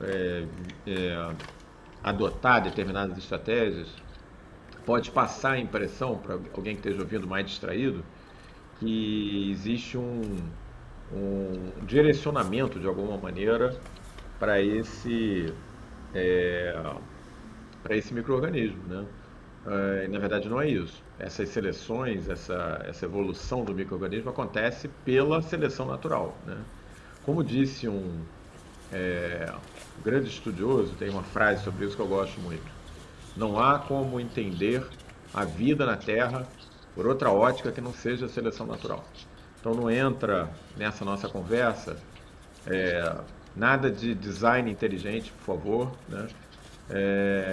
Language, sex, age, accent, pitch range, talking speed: Portuguese, male, 50-69, Brazilian, 95-125 Hz, 120 wpm